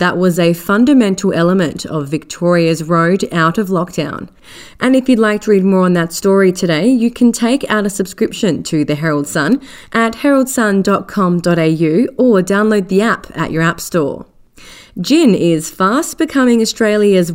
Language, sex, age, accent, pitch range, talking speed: English, female, 30-49, Australian, 170-220 Hz, 165 wpm